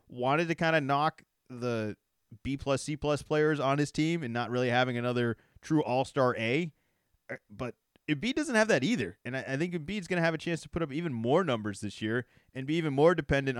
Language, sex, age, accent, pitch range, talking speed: English, male, 30-49, American, 125-165 Hz, 215 wpm